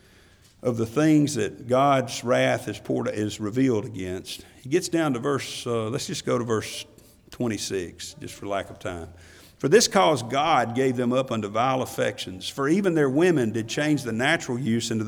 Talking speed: 185 wpm